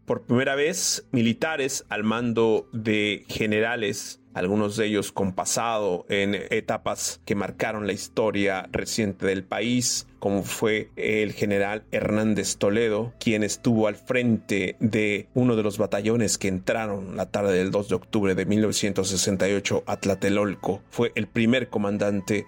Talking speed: 140 wpm